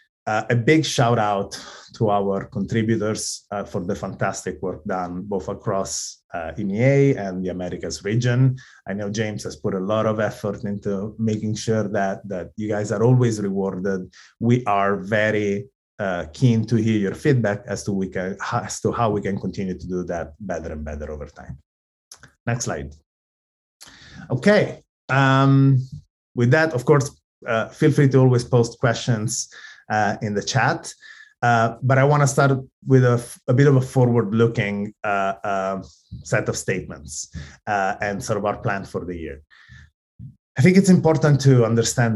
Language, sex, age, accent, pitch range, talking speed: English, male, 30-49, Italian, 95-125 Hz, 170 wpm